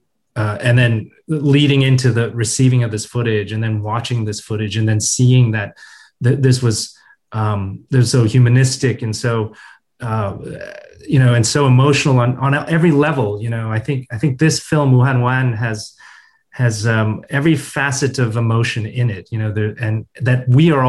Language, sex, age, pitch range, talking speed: English, male, 30-49, 110-135 Hz, 185 wpm